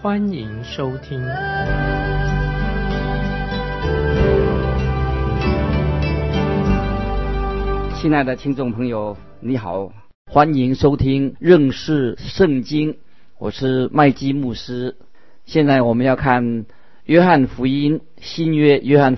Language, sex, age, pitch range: Chinese, male, 50-69, 115-145 Hz